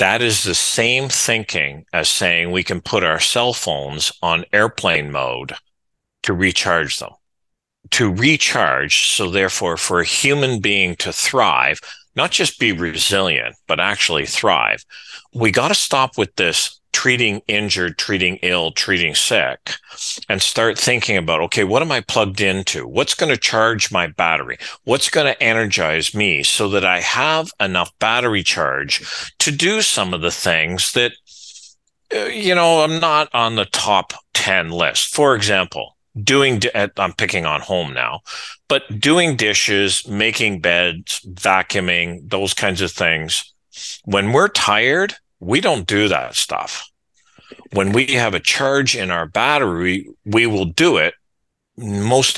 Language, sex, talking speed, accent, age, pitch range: English, male, 150 wpm, American, 40-59, 90-120 Hz